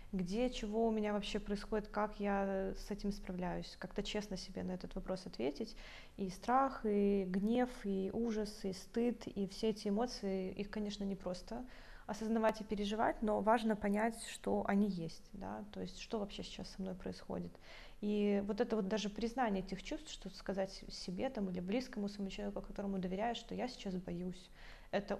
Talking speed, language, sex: 180 wpm, Russian, female